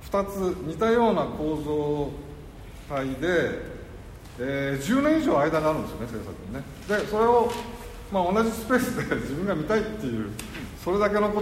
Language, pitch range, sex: Japanese, 110-160 Hz, male